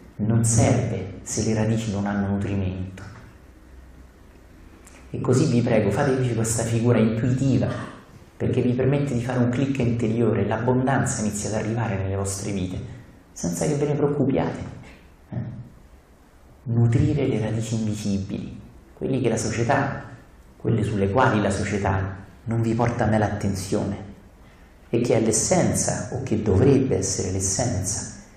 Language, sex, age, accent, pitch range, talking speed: Italian, male, 40-59, native, 95-115 Hz, 135 wpm